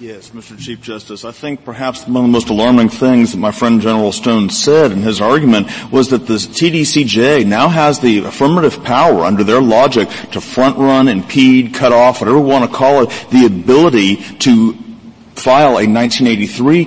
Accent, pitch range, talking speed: American, 120-170 Hz, 180 wpm